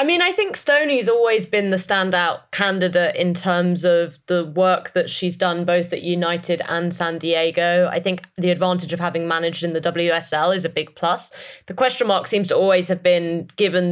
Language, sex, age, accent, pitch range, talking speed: English, female, 20-39, British, 170-215 Hz, 205 wpm